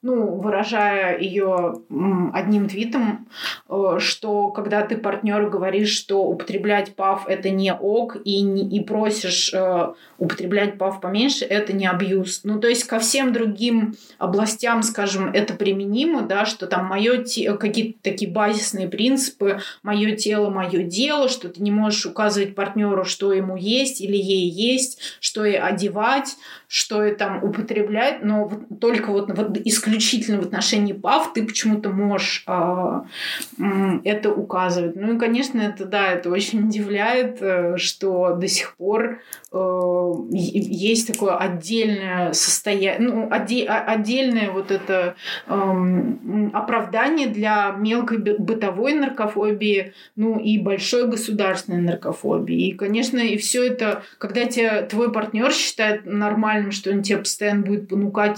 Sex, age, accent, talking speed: female, 20-39, native, 135 wpm